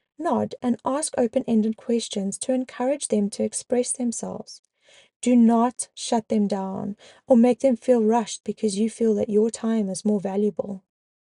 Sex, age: female, 20-39